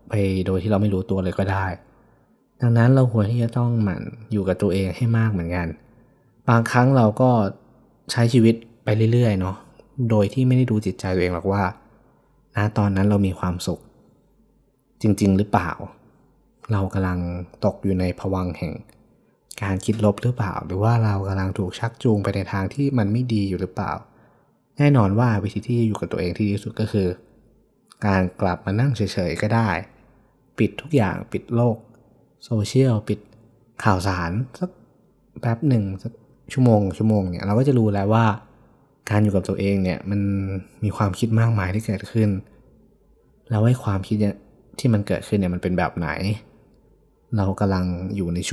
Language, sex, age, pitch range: Thai, male, 20-39, 95-115 Hz